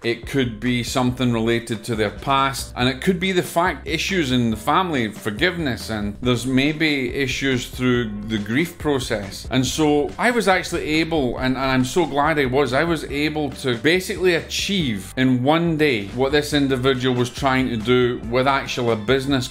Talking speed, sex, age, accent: 185 wpm, male, 30-49, British